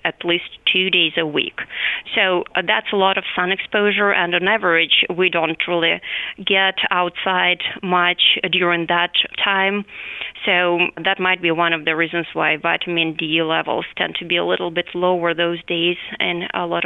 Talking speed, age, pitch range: 175 wpm, 20-39, 175-210 Hz